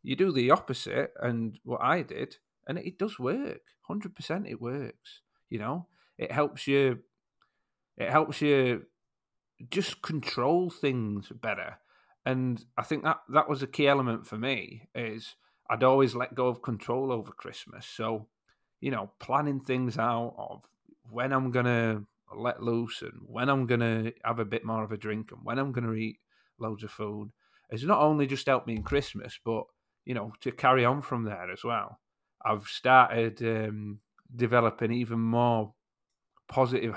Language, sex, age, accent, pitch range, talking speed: English, male, 40-59, British, 115-140 Hz, 170 wpm